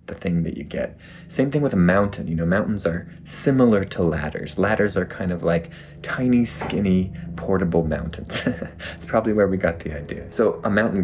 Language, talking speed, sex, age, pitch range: English, 195 wpm, male, 20-39, 85-125 Hz